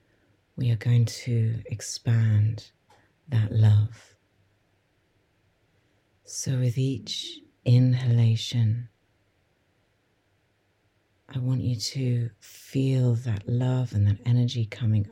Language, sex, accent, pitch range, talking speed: English, female, British, 105-120 Hz, 85 wpm